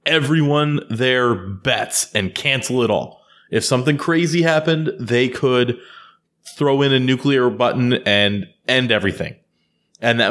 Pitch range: 100-140 Hz